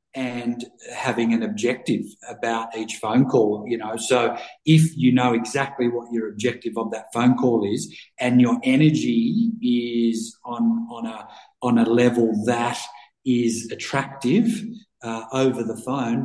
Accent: Australian